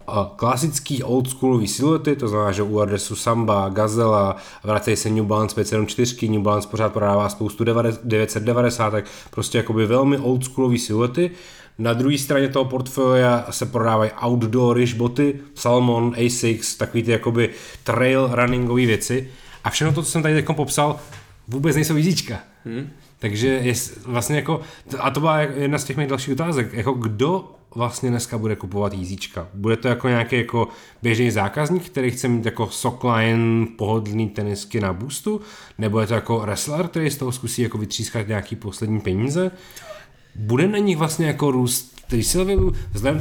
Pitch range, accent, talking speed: 110-140 Hz, native, 160 wpm